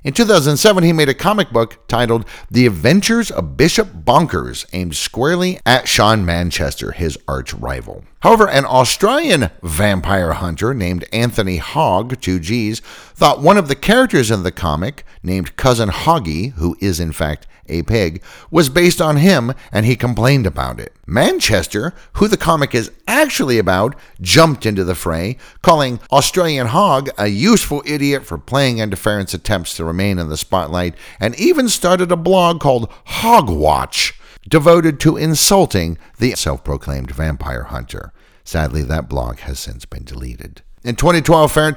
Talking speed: 155 wpm